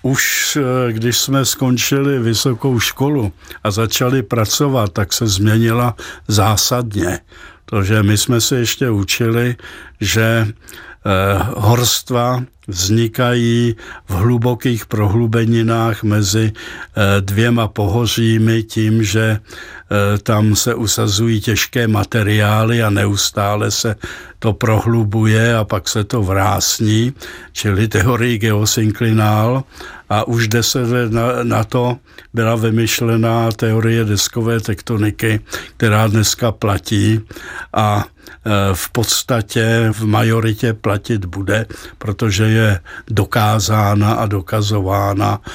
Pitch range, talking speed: 105-120 Hz, 95 wpm